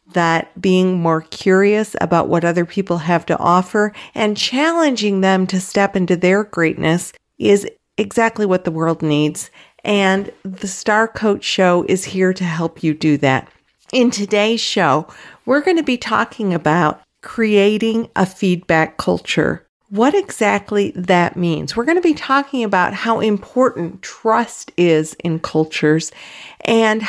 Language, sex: English, female